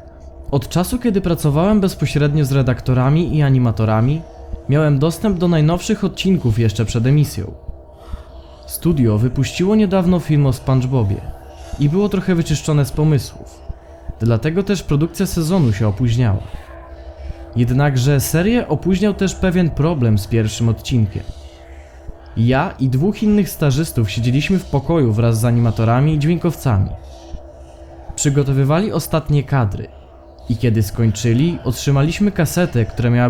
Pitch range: 95-155 Hz